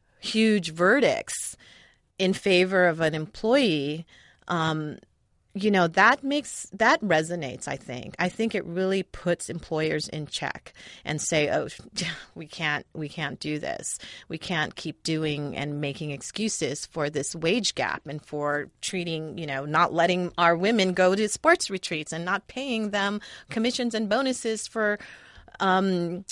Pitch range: 155-205 Hz